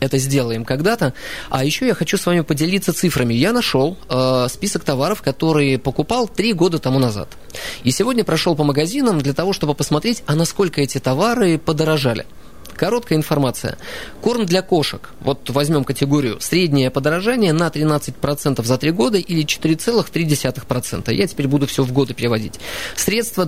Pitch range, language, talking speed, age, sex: 135-175 Hz, Russian, 155 wpm, 20-39, male